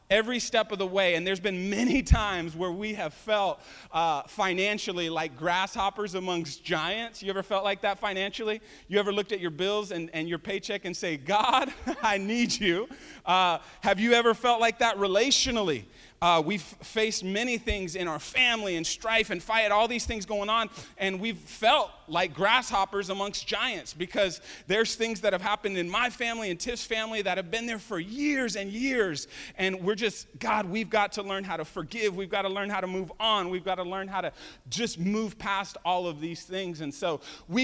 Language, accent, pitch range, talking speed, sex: English, American, 175-220 Hz, 205 wpm, male